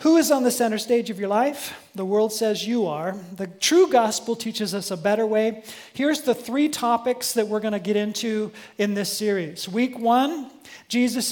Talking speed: 200 wpm